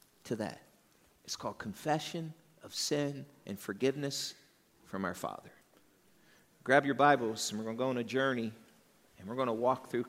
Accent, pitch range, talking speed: American, 125-170 Hz, 170 wpm